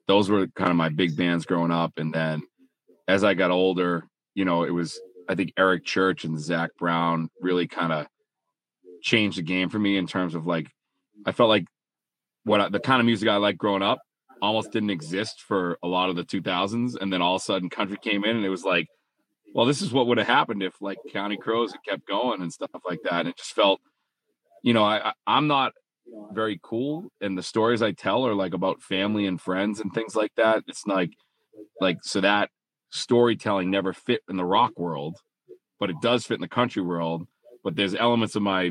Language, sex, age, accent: English, male, 30-49, American